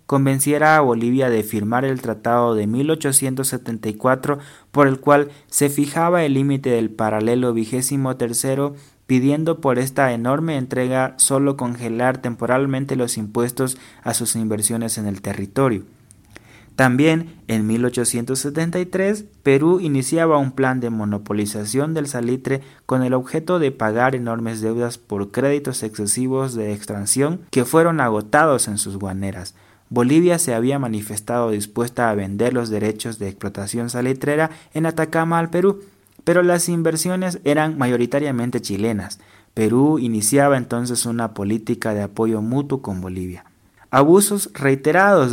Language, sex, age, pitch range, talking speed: Spanish, male, 30-49, 110-140 Hz, 130 wpm